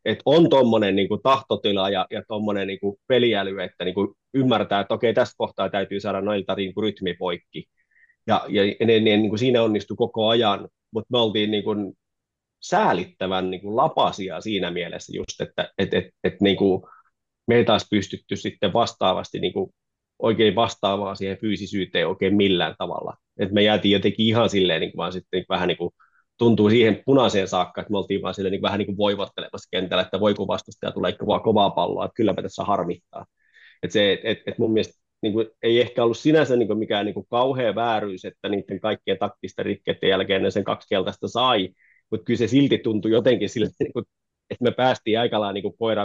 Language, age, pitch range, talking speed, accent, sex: Finnish, 20-39, 100-115 Hz, 180 wpm, native, male